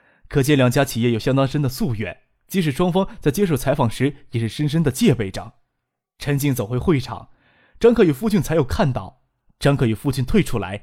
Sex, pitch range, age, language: male, 115-150 Hz, 20-39, Chinese